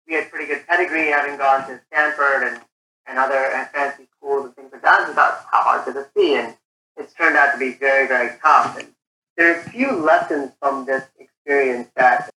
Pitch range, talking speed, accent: 130-155 Hz, 210 wpm, American